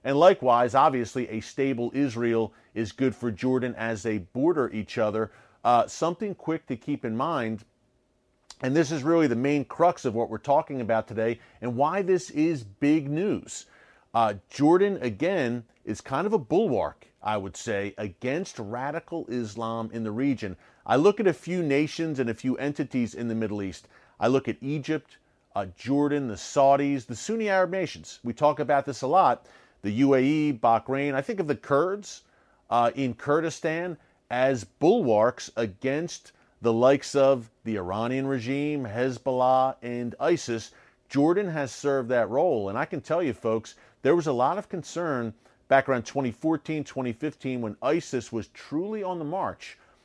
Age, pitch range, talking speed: 40-59, 115-150 Hz, 170 wpm